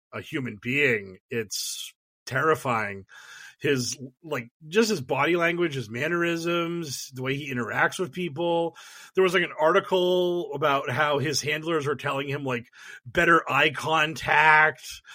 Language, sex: English, male